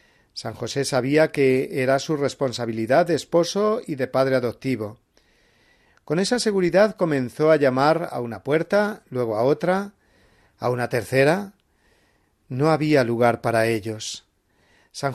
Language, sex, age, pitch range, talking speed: Spanish, male, 40-59, 125-165 Hz, 135 wpm